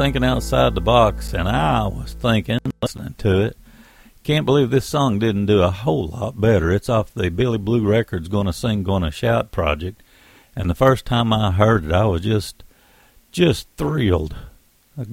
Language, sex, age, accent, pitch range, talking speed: English, male, 60-79, American, 95-135 Hz, 180 wpm